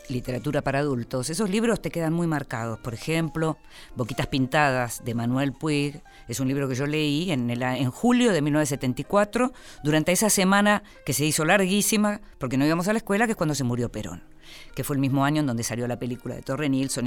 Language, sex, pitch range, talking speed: Spanish, female, 130-170 Hz, 205 wpm